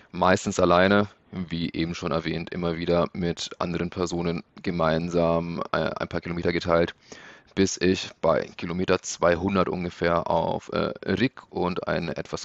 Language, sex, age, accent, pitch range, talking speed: German, male, 30-49, German, 85-95 Hz, 130 wpm